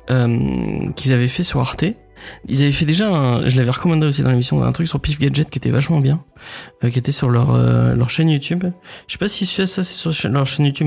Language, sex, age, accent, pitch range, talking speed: French, male, 20-39, French, 120-140 Hz, 255 wpm